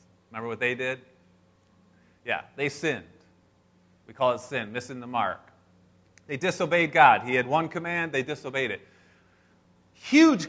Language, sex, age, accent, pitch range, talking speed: English, male, 30-49, American, 90-150 Hz, 145 wpm